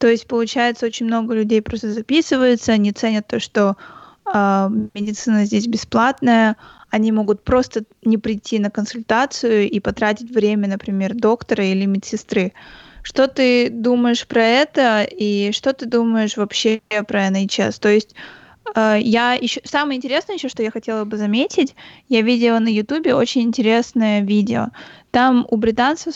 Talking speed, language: 150 wpm, Russian